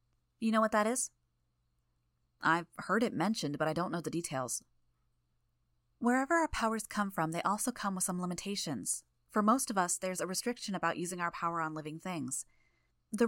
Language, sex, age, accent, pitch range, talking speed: English, female, 20-39, American, 155-210 Hz, 185 wpm